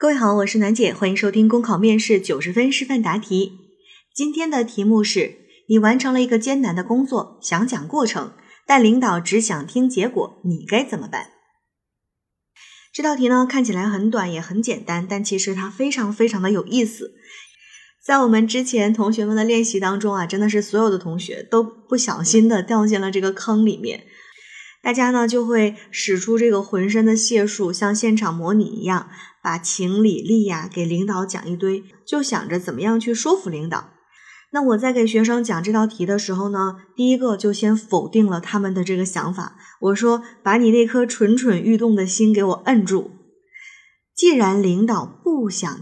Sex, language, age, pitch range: female, Chinese, 20-39, 195-240 Hz